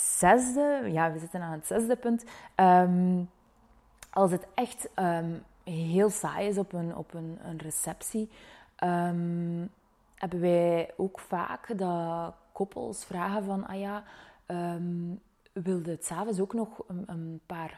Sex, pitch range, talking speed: female, 170-205 Hz, 145 wpm